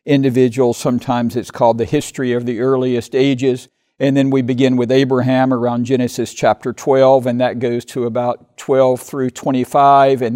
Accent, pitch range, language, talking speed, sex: American, 125-145 Hz, English, 170 wpm, male